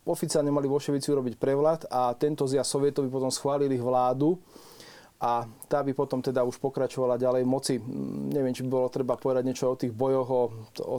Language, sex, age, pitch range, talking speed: Slovak, male, 20-39, 130-140 Hz, 175 wpm